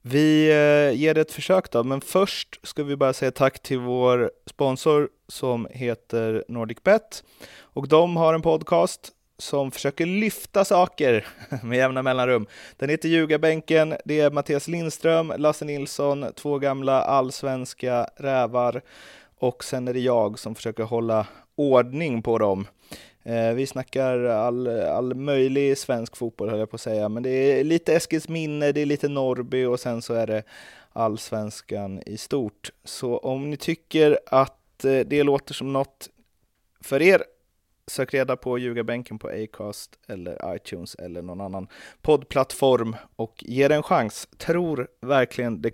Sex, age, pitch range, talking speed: male, 30-49, 120-150 Hz, 155 wpm